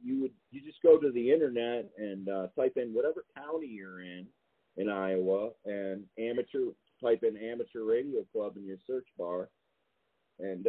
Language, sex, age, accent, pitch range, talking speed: English, male, 40-59, American, 90-120 Hz, 170 wpm